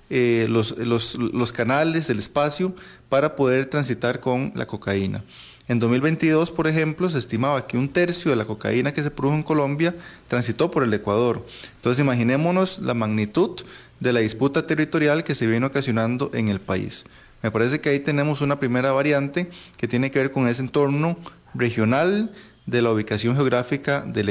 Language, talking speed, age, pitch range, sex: Spanish, 170 wpm, 30-49, 120-150 Hz, male